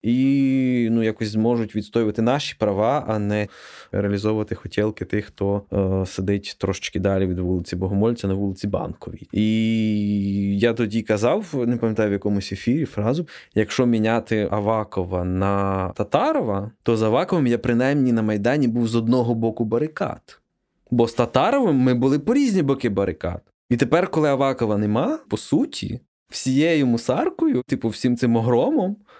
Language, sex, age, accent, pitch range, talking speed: Ukrainian, male, 20-39, native, 105-160 Hz, 150 wpm